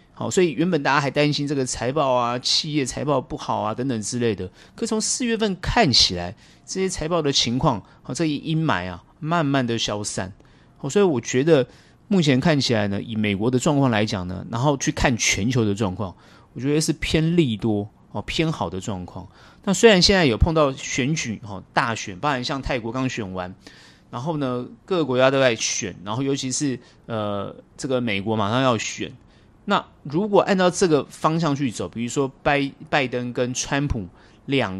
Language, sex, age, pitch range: Chinese, male, 30-49, 110-155 Hz